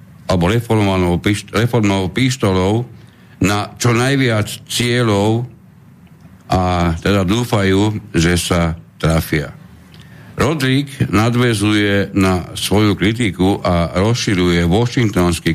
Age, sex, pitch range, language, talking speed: 60-79, male, 90-110 Hz, Slovak, 80 wpm